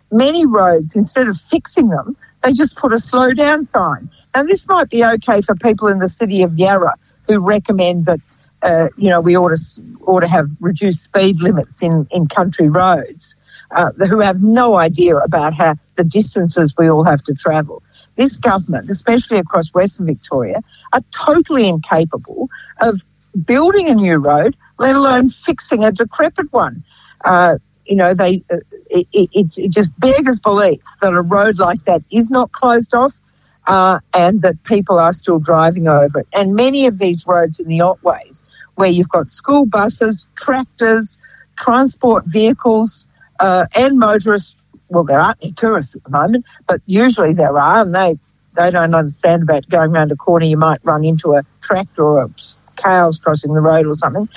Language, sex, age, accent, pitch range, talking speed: English, female, 50-69, Australian, 165-230 Hz, 180 wpm